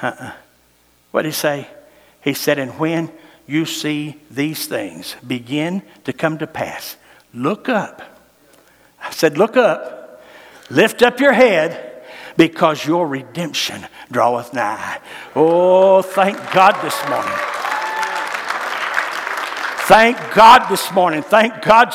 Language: English